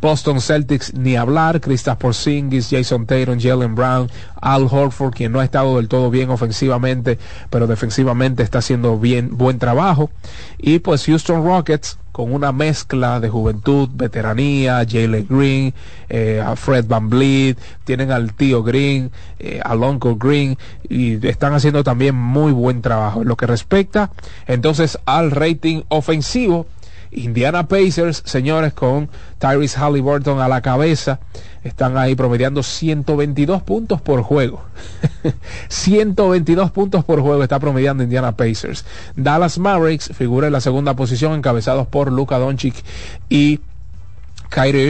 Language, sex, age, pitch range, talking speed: Spanish, male, 30-49, 120-145 Hz, 140 wpm